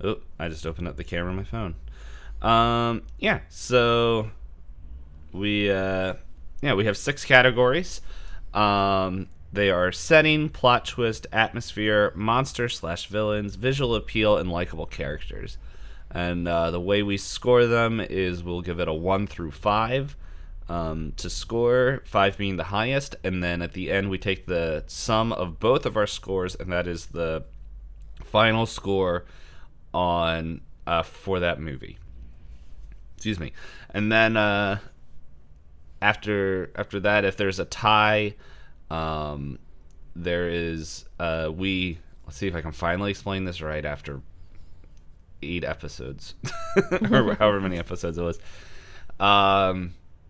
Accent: American